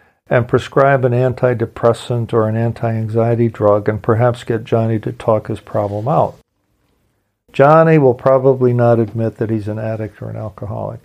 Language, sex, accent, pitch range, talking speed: English, male, American, 115-135 Hz, 155 wpm